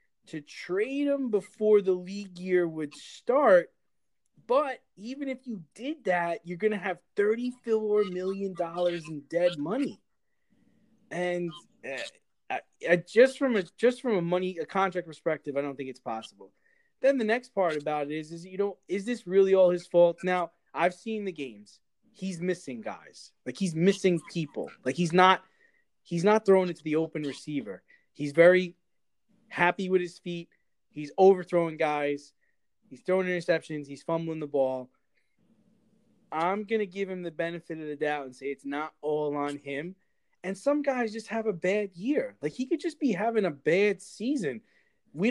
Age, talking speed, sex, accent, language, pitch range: 20-39, 175 wpm, male, American, English, 160-215 Hz